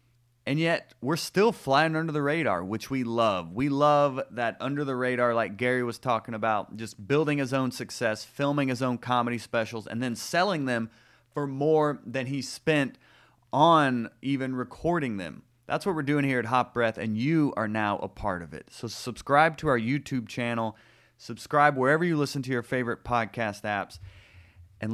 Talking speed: 185 wpm